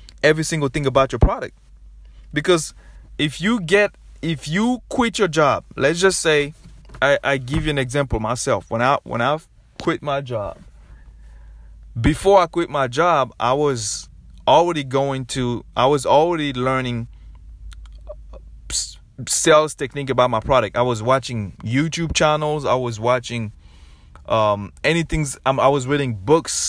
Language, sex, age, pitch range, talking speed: English, male, 20-39, 115-155 Hz, 150 wpm